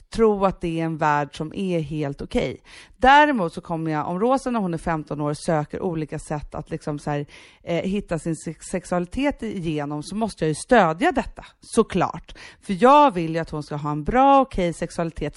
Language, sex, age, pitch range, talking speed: English, female, 40-59, 160-215 Hz, 210 wpm